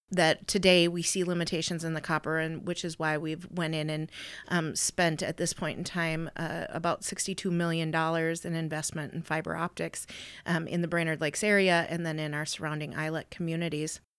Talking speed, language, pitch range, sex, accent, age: 195 wpm, English, 160-180 Hz, female, American, 30-49